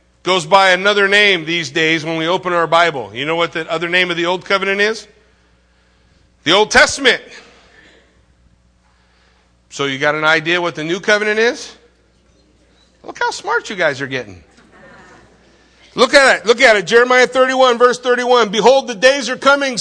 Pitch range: 185-245 Hz